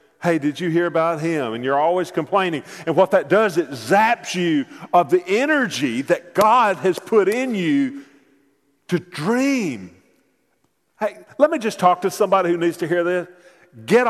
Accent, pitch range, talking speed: American, 170-260 Hz, 175 wpm